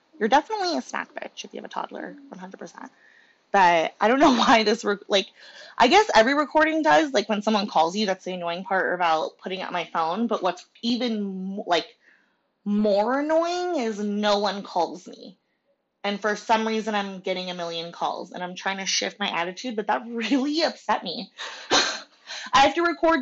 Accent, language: American, English